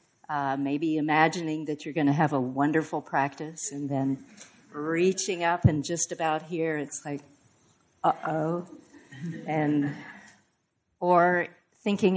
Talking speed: 125 wpm